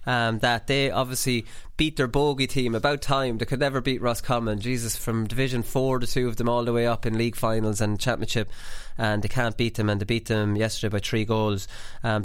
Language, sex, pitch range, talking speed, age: English, male, 105-125 Hz, 230 wpm, 20-39